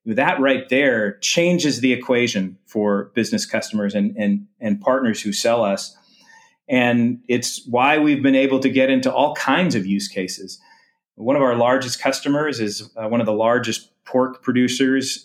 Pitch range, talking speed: 115-170 Hz, 165 wpm